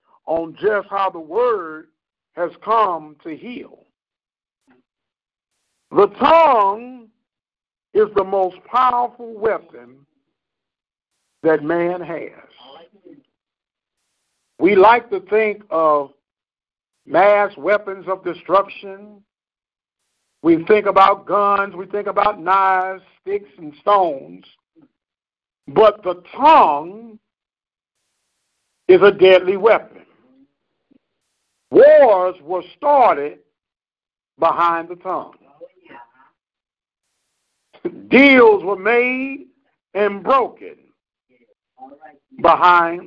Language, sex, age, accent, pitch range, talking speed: English, male, 50-69, American, 185-275 Hz, 80 wpm